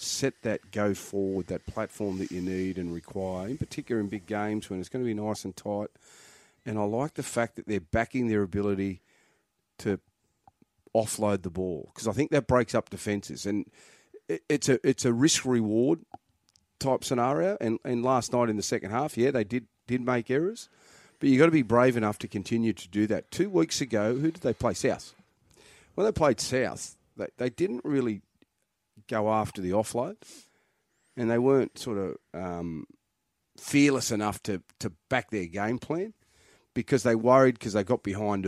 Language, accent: English, Australian